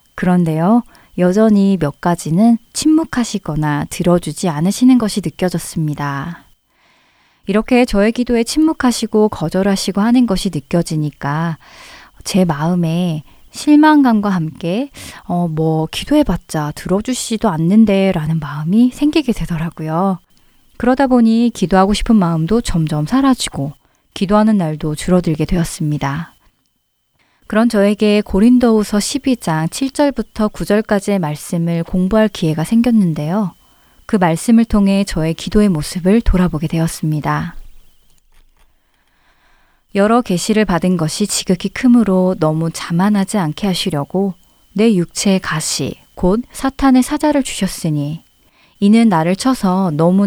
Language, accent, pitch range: Korean, native, 165-220 Hz